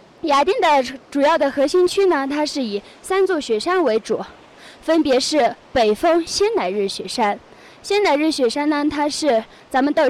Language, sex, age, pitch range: Chinese, female, 20-39, 240-355 Hz